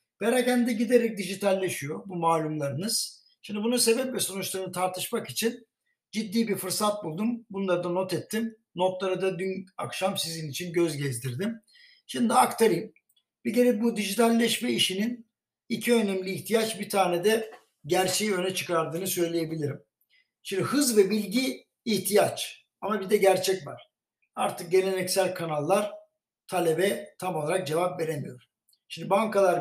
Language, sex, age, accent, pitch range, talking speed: Turkish, male, 60-79, native, 175-220 Hz, 130 wpm